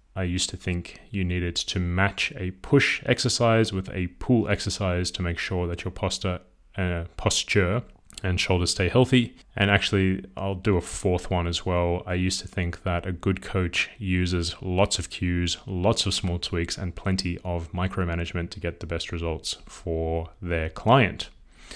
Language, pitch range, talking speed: English, 90-105 Hz, 175 wpm